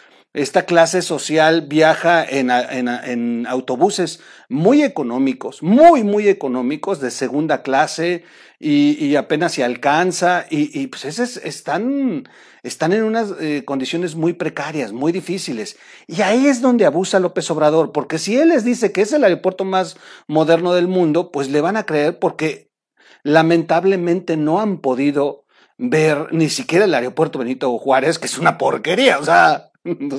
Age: 40-59